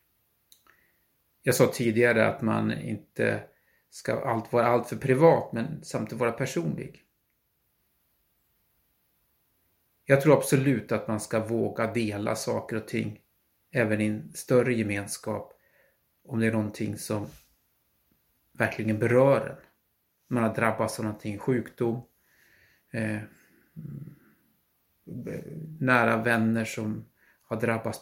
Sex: male